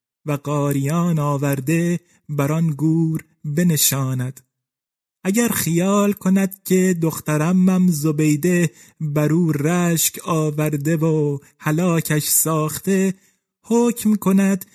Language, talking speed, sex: Persian, 85 wpm, male